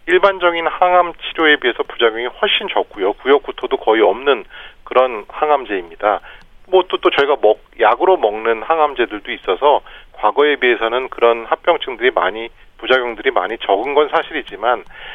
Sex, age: male, 40-59